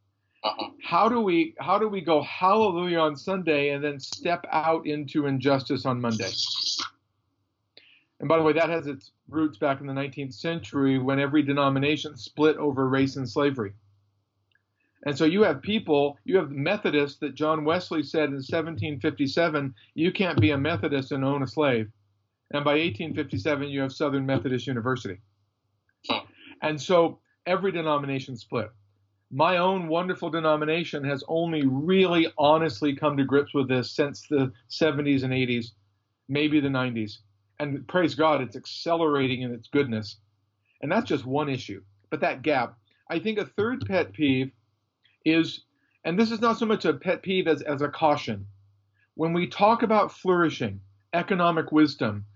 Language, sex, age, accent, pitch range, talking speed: English, male, 50-69, American, 120-160 Hz, 160 wpm